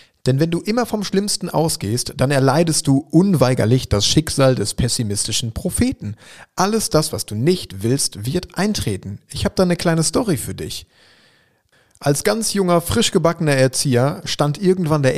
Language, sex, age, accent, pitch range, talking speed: German, male, 30-49, German, 125-170 Hz, 160 wpm